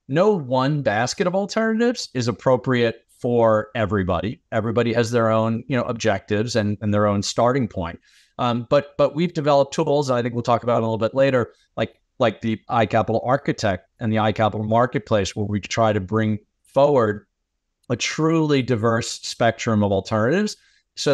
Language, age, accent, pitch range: English, 30-49, American, 110-135 Hz